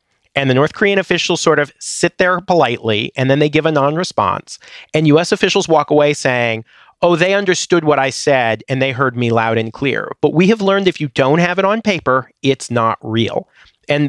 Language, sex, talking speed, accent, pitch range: English, male, 215 wpm, American, 135-175 Hz